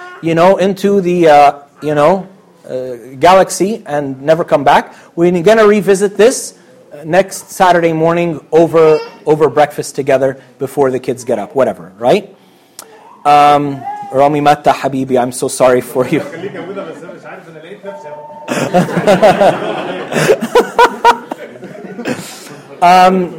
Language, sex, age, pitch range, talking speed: English, male, 30-49, 140-185 Hz, 110 wpm